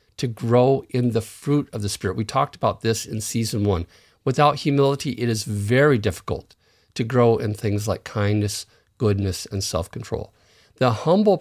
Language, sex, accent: English, male, American